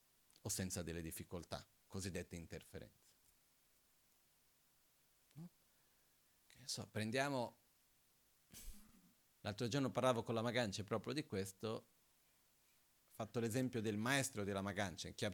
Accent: native